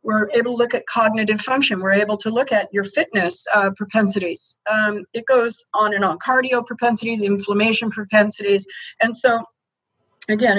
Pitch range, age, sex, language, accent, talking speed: 205-250 Hz, 40-59, female, English, American, 165 wpm